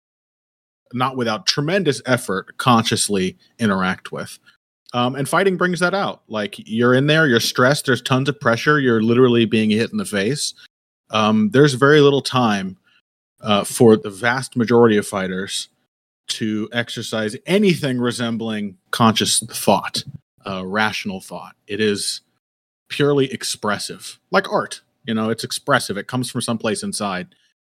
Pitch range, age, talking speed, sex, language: 105-125 Hz, 30-49, 145 wpm, male, English